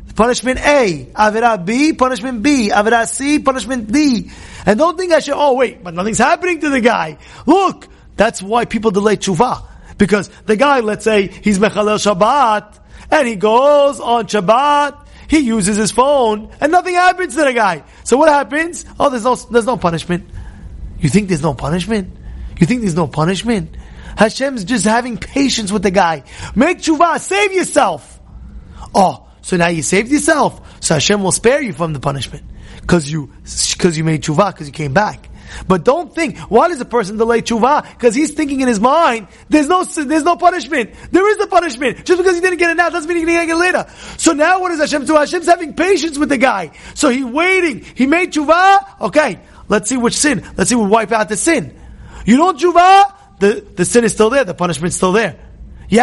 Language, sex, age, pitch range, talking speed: English, male, 30-49, 200-300 Hz, 205 wpm